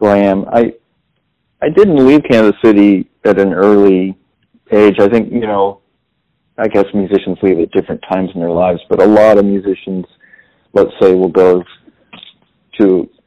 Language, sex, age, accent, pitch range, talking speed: English, male, 50-69, American, 95-105 Hz, 165 wpm